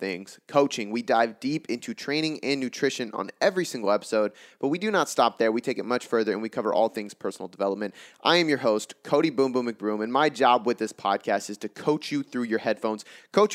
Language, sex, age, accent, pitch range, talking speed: English, male, 20-39, American, 110-145 Hz, 235 wpm